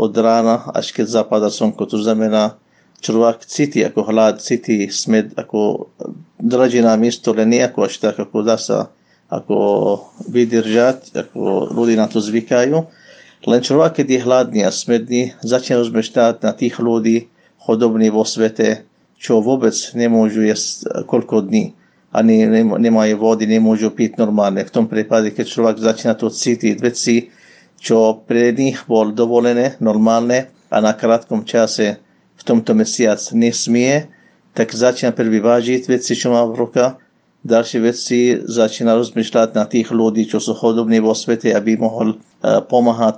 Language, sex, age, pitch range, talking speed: Slovak, male, 50-69, 110-120 Hz, 145 wpm